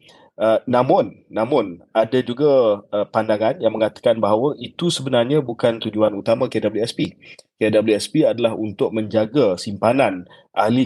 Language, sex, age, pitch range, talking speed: Malay, male, 30-49, 110-130 Hz, 120 wpm